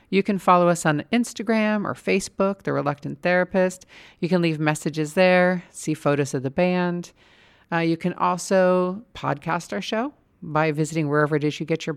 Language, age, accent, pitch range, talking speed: English, 40-59, American, 150-190 Hz, 180 wpm